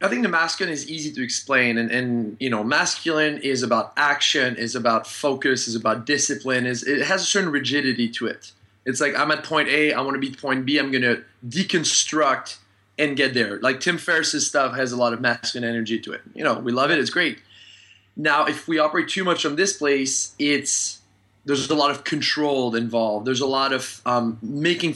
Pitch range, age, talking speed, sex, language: 120-145 Hz, 20-39, 215 wpm, male, English